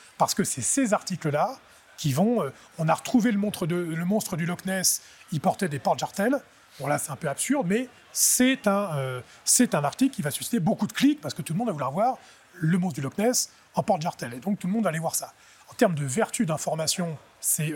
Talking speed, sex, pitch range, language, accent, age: 245 wpm, male, 140-200 Hz, French, French, 30-49